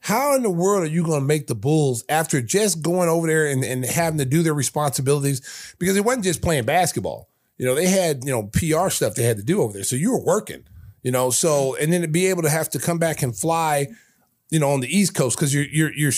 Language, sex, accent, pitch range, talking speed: English, male, American, 125-165 Hz, 265 wpm